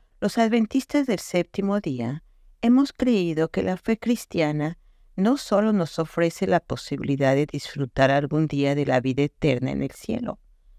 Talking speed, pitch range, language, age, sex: 155 wpm, 135-195 Hz, Spanish, 50-69, female